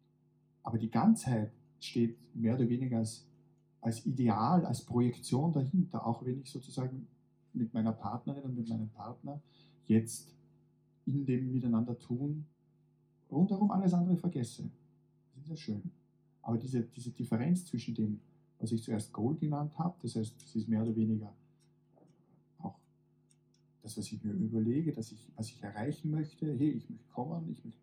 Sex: male